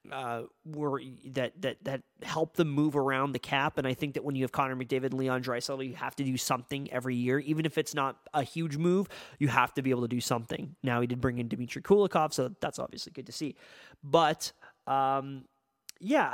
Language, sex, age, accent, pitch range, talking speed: English, male, 30-49, American, 130-160 Hz, 225 wpm